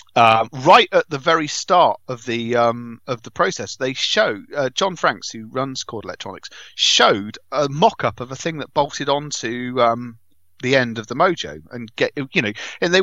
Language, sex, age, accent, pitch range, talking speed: English, male, 40-59, British, 115-175 Hz, 200 wpm